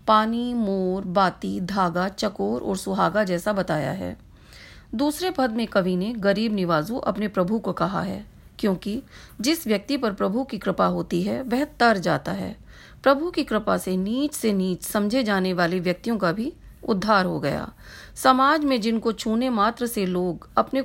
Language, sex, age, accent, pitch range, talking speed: Hindi, female, 40-59, native, 185-235 Hz, 170 wpm